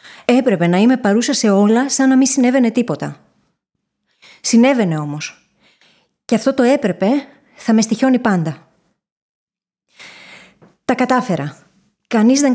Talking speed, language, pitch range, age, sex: 120 wpm, Greek, 195-245 Hz, 20-39, female